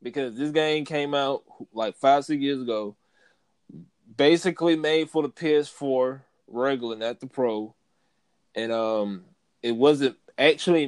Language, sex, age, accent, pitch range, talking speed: English, male, 20-39, American, 130-165 Hz, 130 wpm